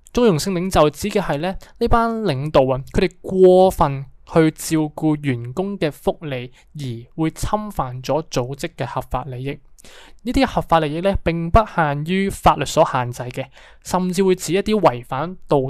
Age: 20-39